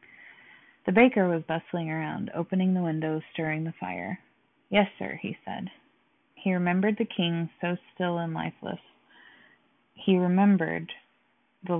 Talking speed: 130 wpm